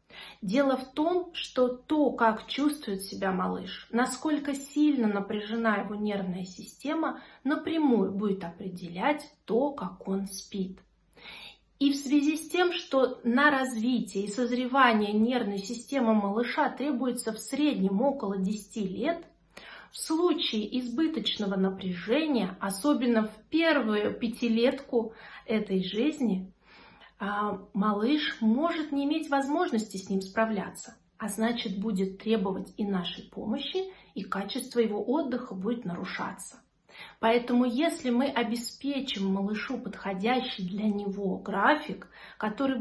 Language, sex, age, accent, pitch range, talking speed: Russian, female, 30-49, native, 200-270 Hz, 115 wpm